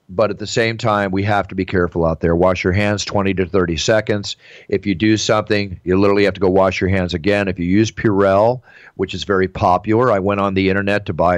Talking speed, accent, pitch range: 250 wpm, American, 90-105 Hz